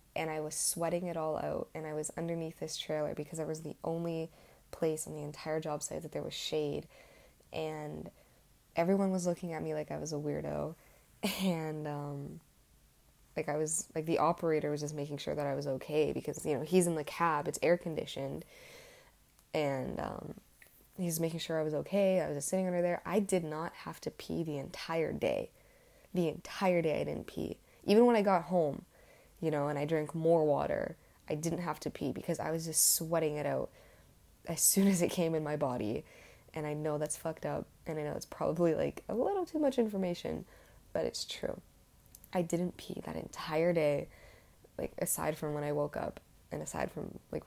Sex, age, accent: female, 20-39, American